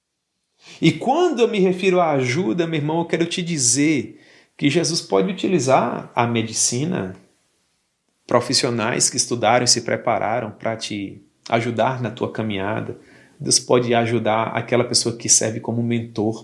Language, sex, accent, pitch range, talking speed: Portuguese, male, Brazilian, 110-155 Hz, 145 wpm